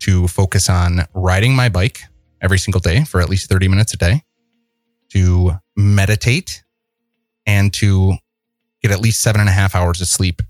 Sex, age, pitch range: male, 30-49, 90-110 Hz